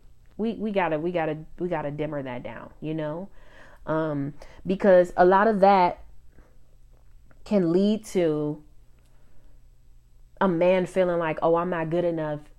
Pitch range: 145-175 Hz